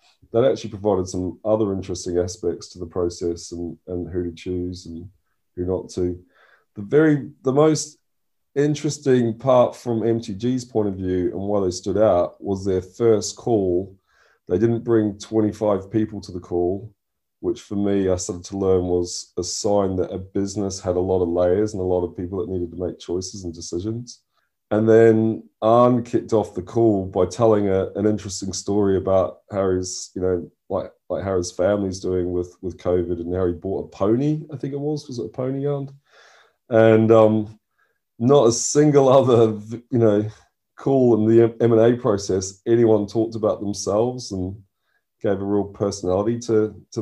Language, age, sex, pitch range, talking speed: English, 30-49, male, 90-115 Hz, 180 wpm